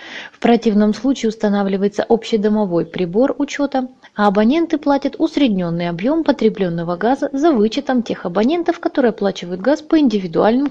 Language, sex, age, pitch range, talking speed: Russian, female, 20-39, 185-250 Hz, 130 wpm